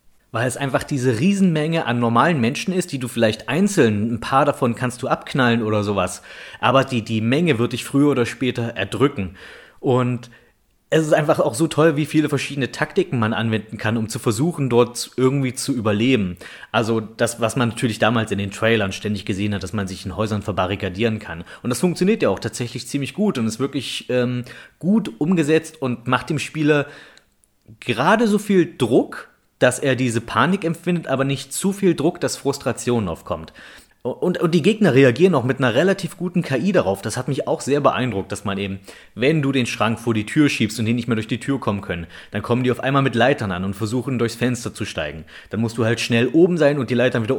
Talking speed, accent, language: 215 wpm, German, German